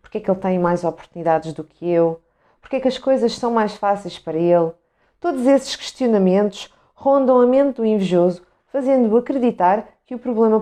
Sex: female